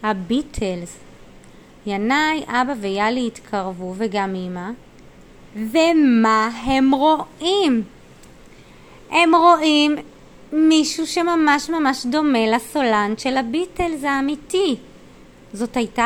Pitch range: 215-295 Hz